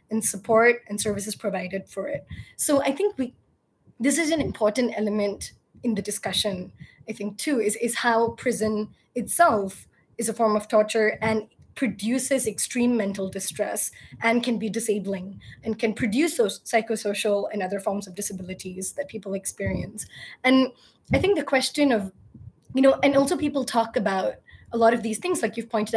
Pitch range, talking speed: 205-245 Hz, 175 wpm